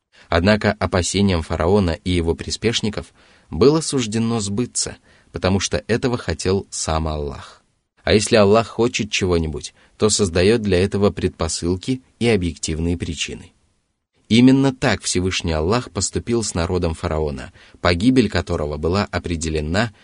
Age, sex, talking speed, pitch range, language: 30-49, male, 120 wpm, 85-110 Hz, Russian